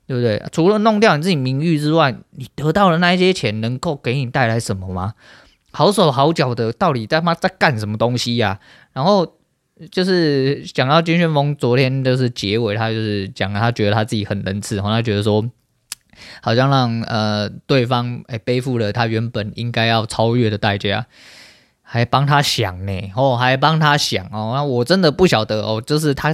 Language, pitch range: Chinese, 110-140 Hz